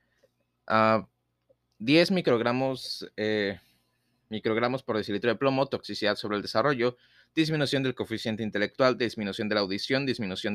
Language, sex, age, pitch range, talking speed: Spanish, male, 30-49, 100-130 Hz, 120 wpm